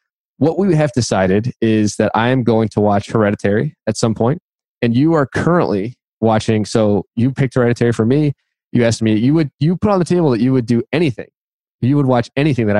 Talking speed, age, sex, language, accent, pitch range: 215 wpm, 20-39, male, English, American, 105-130 Hz